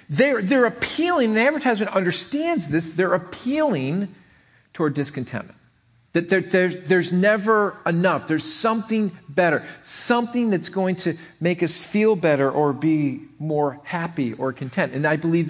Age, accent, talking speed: 40-59, American, 145 wpm